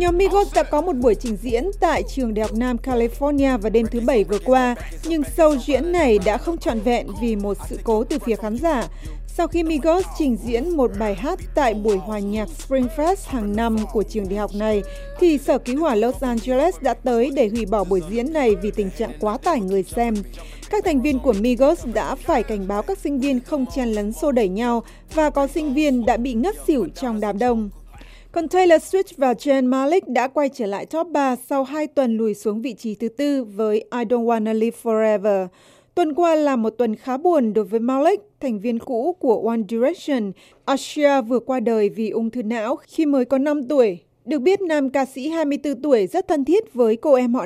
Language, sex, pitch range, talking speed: Vietnamese, female, 225-300 Hz, 225 wpm